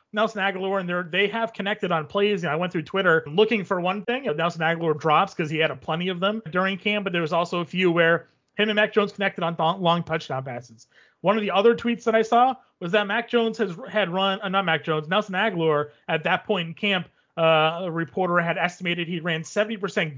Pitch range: 170-210 Hz